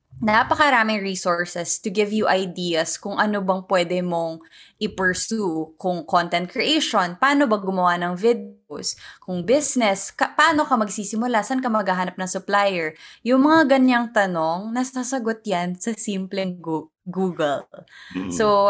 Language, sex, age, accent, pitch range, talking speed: English, female, 20-39, Filipino, 175-220 Hz, 130 wpm